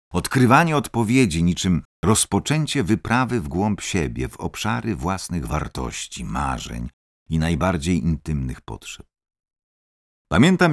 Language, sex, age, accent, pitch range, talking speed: Polish, male, 50-69, native, 70-105 Hz, 100 wpm